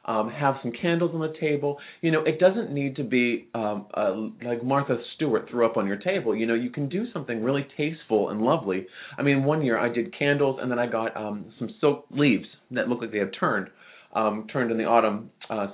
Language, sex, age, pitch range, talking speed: English, male, 30-49, 115-165 Hz, 230 wpm